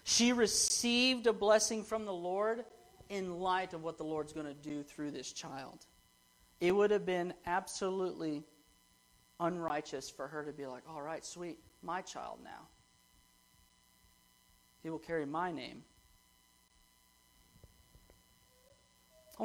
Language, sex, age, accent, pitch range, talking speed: English, male, 40-59, American, 150-195 Hz, 130 wpm